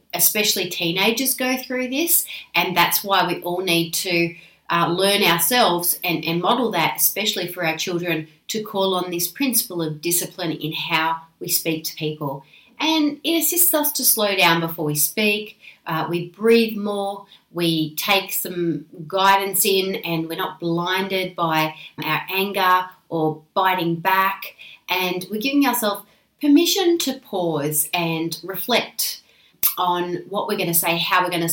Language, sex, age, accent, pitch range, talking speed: English, female, 30-49, Australian, 165-200 Hz, 160 wpm